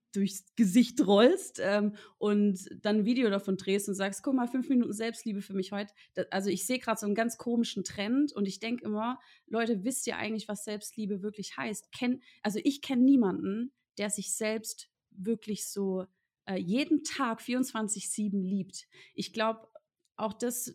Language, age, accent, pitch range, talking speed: German, 30-49, German, 185-225 Hz, 175 wpm